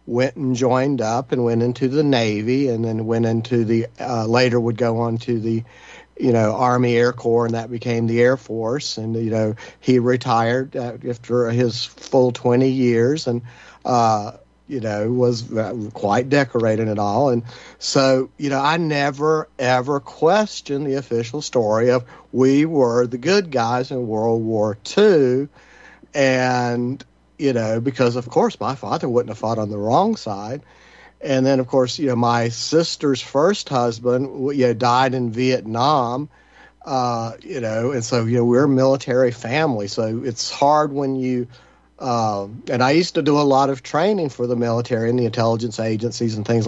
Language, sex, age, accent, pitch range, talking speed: English, male, 50-69, American, 115-135 Hz, 175 wpm